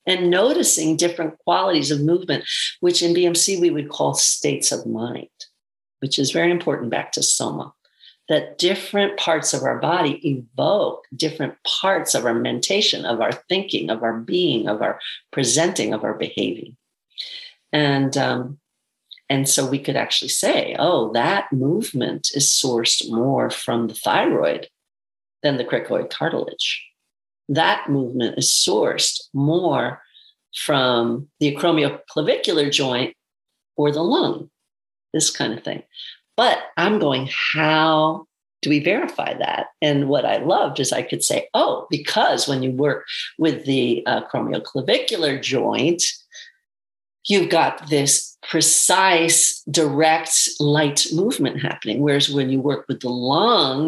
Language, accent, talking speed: English, American, 135 wpm